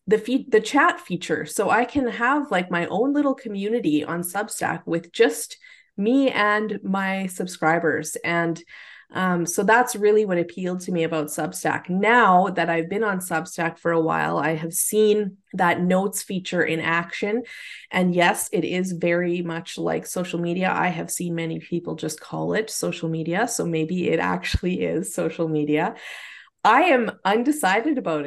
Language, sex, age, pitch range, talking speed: English, female, 20-39, 170-215 Hz, 170 wpm